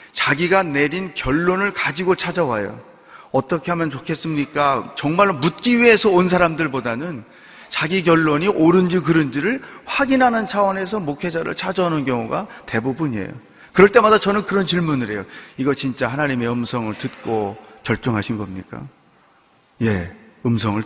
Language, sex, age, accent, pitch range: Korean, male, 40-59, native, 135-195 Hz